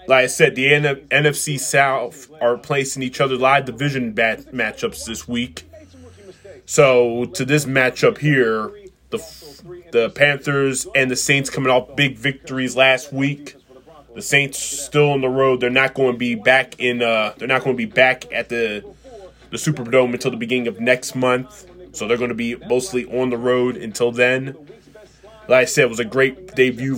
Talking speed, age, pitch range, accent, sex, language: 180 wpm, 20-39, 120-135 Hz, American, male, English